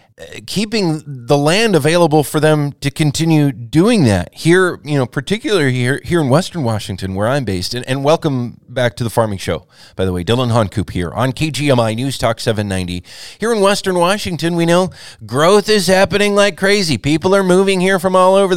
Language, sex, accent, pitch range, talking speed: English, male, American, 120-175 Hz, 190 wpm